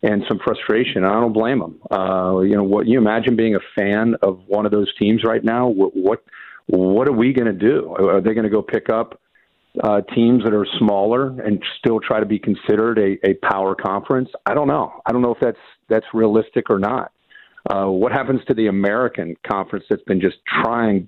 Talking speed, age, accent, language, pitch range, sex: 215 wpm, 50-69, American, English, 100-120 Hz, male